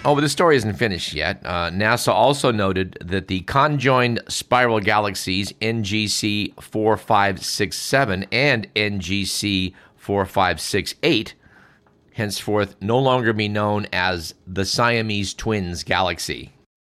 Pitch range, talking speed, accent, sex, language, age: 95-120 Hz, 130 wpm, American, male, English, 50-69